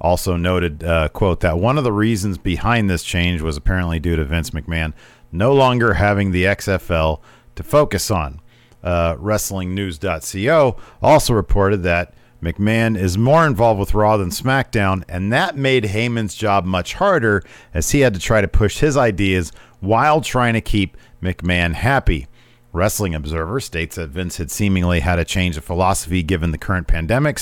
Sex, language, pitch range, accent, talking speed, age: male, English, 90-120 Hz, American, 170 wpm, 40-59